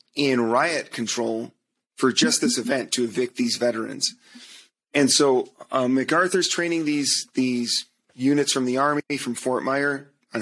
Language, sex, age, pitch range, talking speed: English, male, 30-49, 120-140 Hz, 150 wpm